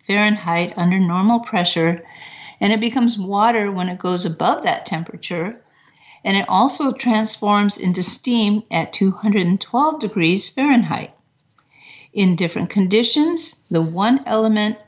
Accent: American